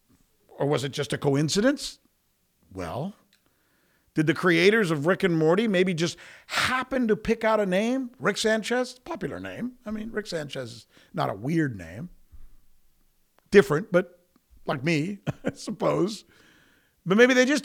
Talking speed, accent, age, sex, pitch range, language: 155 wpm, American, 50-69, male, 155-210 Hz, English